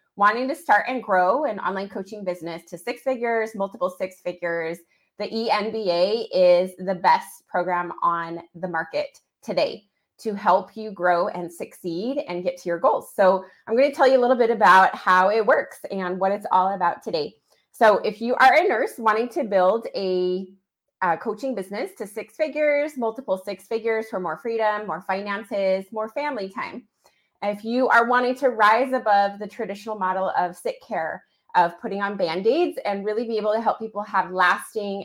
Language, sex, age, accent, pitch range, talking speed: English, female, 20-39, American, 185-230 Hz, 185 wpm